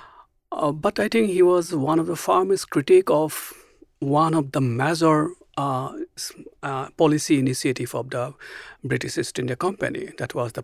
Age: 60-79